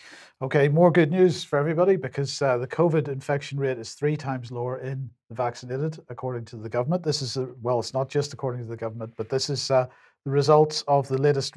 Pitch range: 115-145 Hz